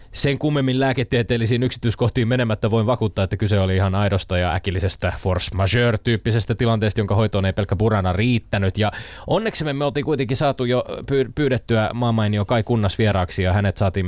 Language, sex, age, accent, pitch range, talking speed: Finnish, male, 20-39, native, 95-120 Hz, 160 wpm